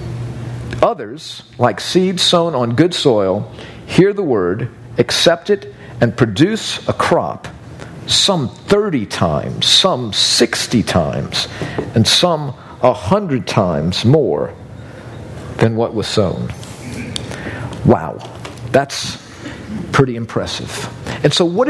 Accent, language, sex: American, English, male